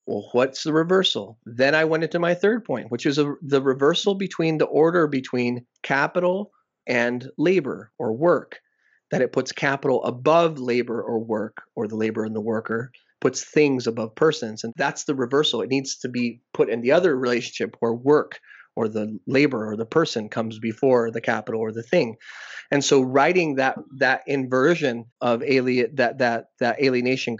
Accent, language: American, English